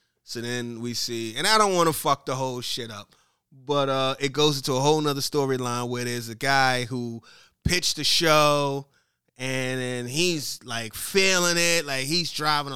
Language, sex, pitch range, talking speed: English, male, 120-165 Hz, 190 wpm